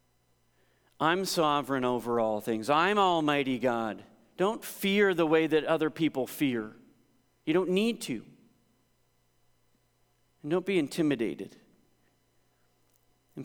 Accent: American